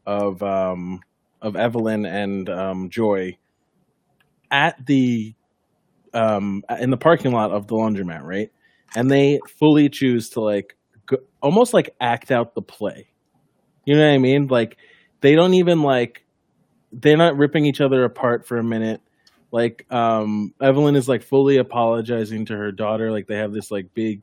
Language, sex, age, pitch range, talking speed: English, male, 20-39, 110-130 Hz, 165 wpm